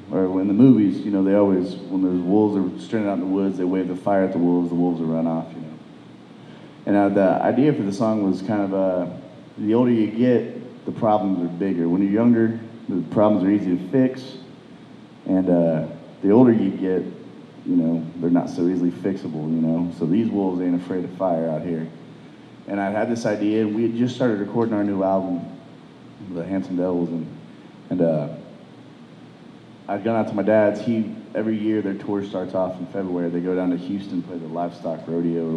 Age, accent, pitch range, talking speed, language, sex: 30-49, American, 85-105 Hz, 215 wpm, English, male